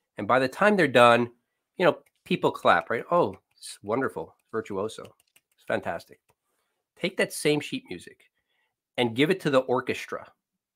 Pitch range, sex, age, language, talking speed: 130-195 Hz, male, 40-59, English, 155 wpm